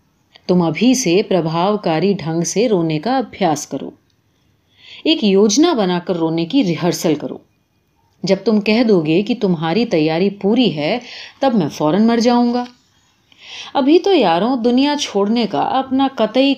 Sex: female